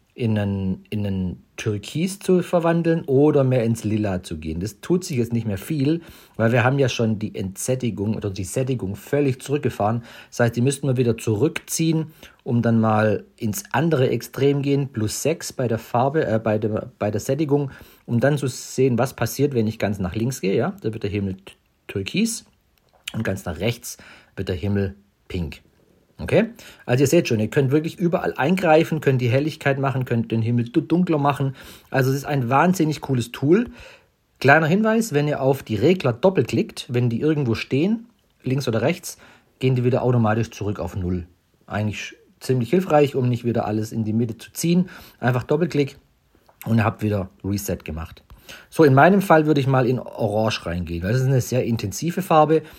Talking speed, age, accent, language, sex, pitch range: 190 wpm, 50-69, German, German, male, 110-145 Hz